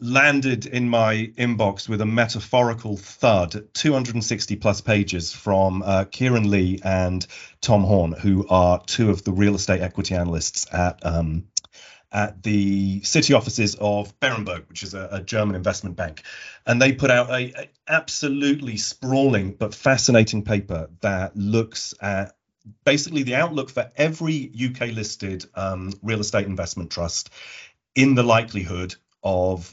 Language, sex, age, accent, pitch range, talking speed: English, male, 40-59, British, 95-120 Hz, 145 wpm